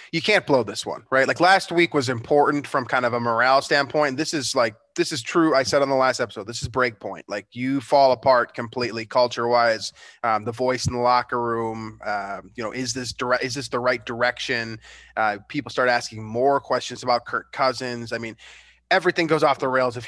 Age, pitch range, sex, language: 20-39, 125-150 Hz, male, English